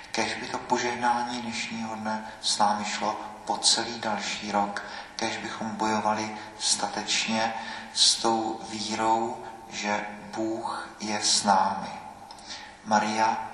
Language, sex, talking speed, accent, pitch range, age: Czech, male, 115 wpm, native, 100-110 Hz, 40-59